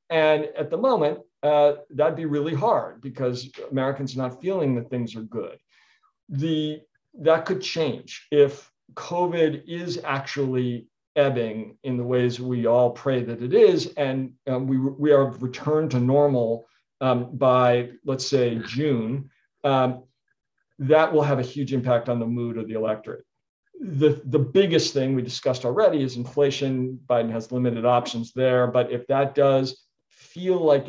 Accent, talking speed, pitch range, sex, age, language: American, 160 wpm, 120-145 Hz, male, 50-69, English